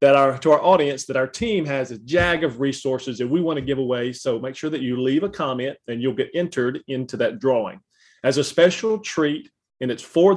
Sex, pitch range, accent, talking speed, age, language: male, 125-165 Hz, American, 235 wpm, 40-59, English